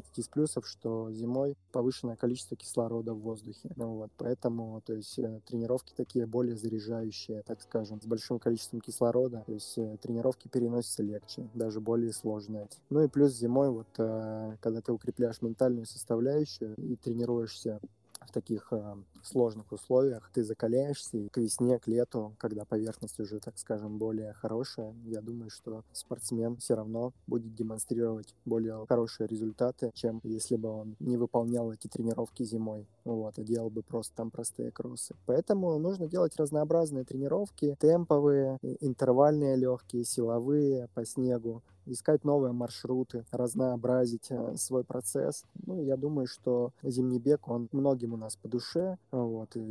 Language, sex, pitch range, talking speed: Russian, male, 110-125 Hz, 145 wpm